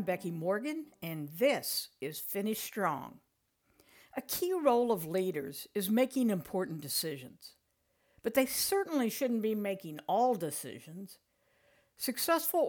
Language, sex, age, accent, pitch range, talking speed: English, female, 60-79, American, 195-265 Hz, 125 wpm